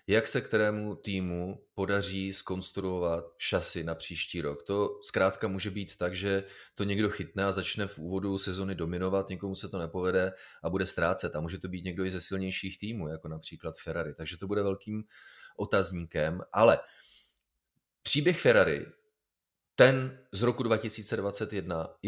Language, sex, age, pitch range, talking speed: Czech, male, 30-49, 85-100 Hz, 150 wpm